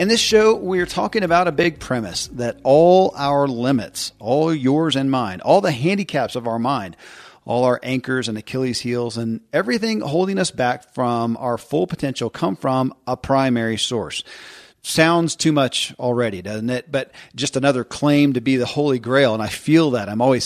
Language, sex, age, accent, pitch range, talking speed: English, male, 40-59, American, 115-145 Hz, 190 wpm